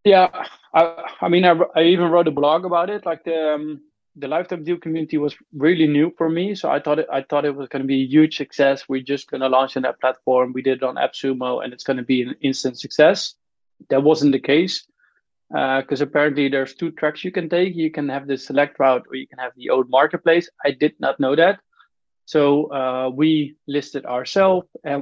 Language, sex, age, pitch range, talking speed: English, male, 20-39, 135-155 Hz, 230 wpm